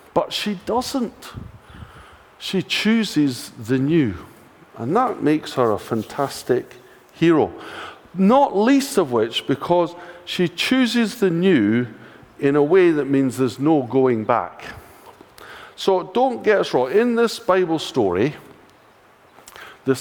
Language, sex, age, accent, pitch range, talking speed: English, male, 50-69, British, 120-205 Hz, 125 wpm